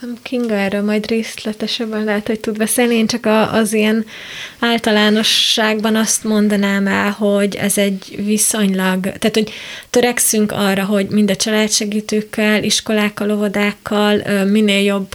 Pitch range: 200-220 Hz